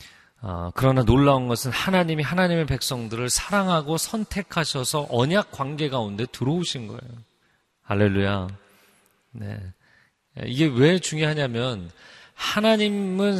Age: 30-49